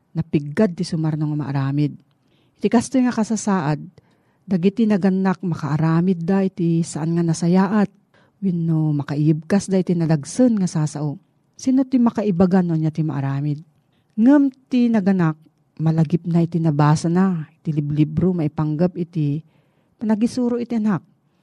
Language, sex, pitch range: Filipino, female, 155-200 Hz